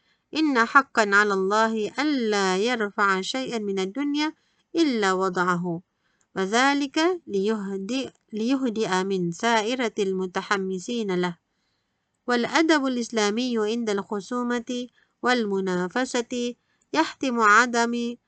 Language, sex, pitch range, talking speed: Malay, female, 200-255 Hz, 80 wpm